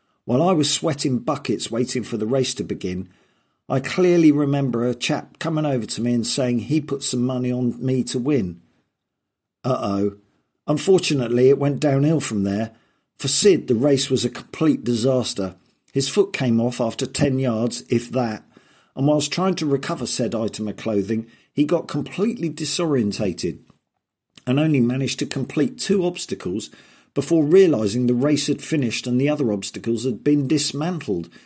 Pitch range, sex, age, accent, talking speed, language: 110-145 Hz, male, 50-69, British, 170 wpm, English